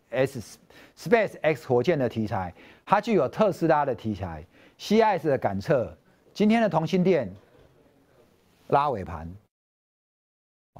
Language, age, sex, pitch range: Chinese, 50-69, male, 115-185 Hz